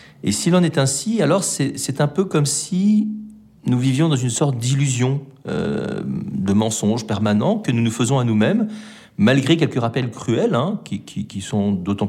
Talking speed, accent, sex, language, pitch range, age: 190 wpm, French, male, French, 105-150 Hz, 40-59